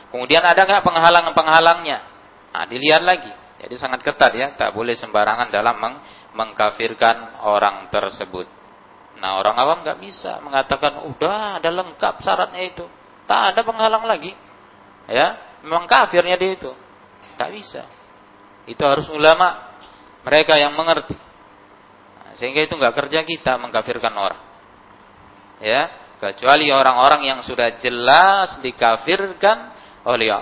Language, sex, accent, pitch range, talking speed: Indonesian, male, native, 100-155 Hz, 120 wpm